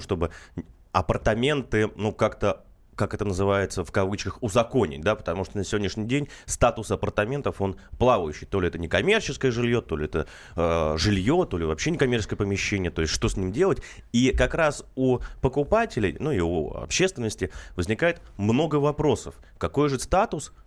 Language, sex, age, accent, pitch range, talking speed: Russian, male, 30-49, native, 95-135 Hz, 165 wpm